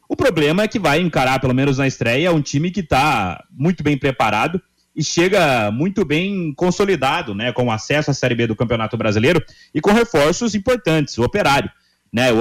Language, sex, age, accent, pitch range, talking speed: Portuguese, male, 30-49, Brazilian, 120-170 Hz, 190 wpm